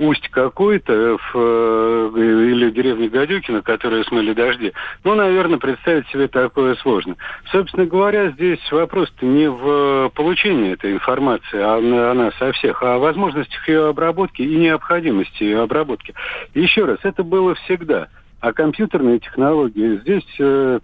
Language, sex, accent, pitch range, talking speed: Russian, male, native, 130-180 Hz, 135 wpm